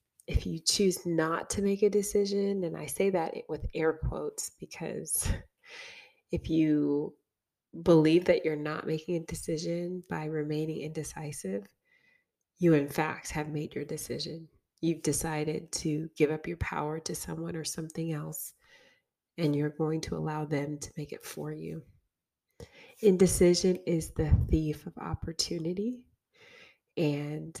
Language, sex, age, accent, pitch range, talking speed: English, female, 20-39, American, 155-185 Hz, 140 wpm